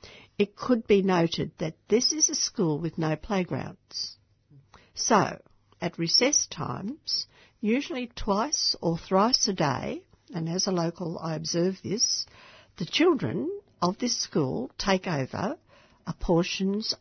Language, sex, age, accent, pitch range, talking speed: English, female, 60-79, Australian, 150-195 Hz, 135 wpm